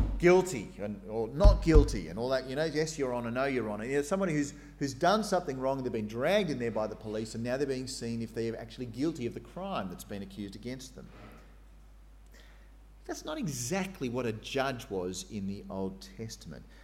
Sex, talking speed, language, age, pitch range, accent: male, 215 wpm, English, 40-59, 110-165 Hz, Australian